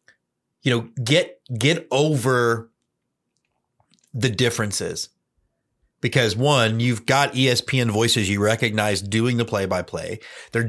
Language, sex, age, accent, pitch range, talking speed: English, male, 30-49, American, 115-145 Hz, 105 wpm